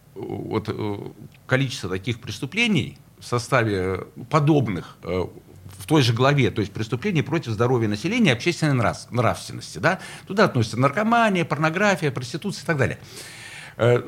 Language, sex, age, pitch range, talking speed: Russian, male, 60-79, 110-150 Hz, 125 wpm